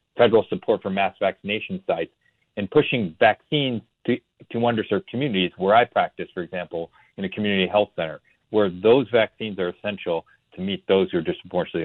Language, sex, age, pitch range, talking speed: English, male, 40-59, 95-120 Hz, 170 wpm